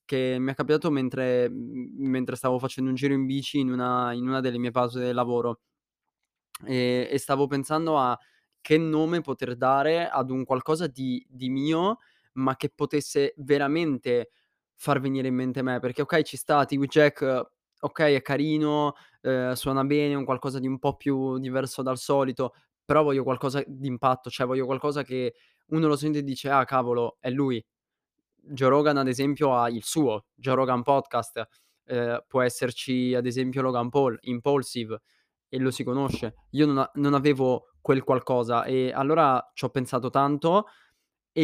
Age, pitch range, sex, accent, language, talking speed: 20-39, 125-145 Hz, male, native, Italian, 175 wpm